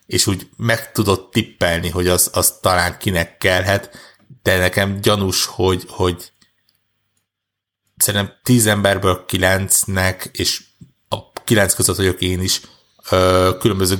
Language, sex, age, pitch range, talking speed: Hungarian, male, 60-79, 90-105 Hz, 120 wpm